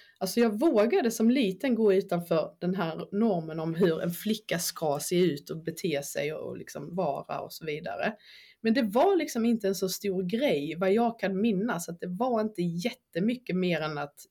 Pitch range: 165-205 Hz